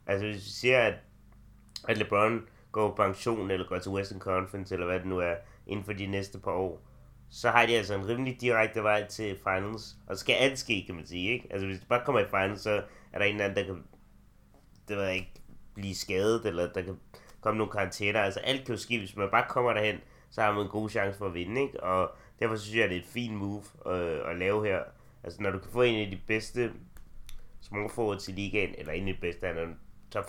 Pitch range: 95-110 Hz